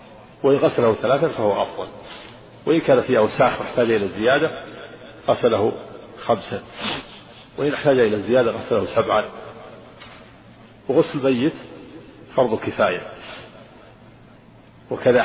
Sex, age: male, 50-69